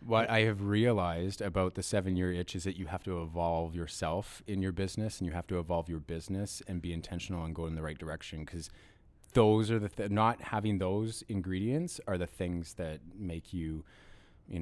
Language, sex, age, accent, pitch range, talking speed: English, male, 30-49, American, 85-105 Hz, 205 wpm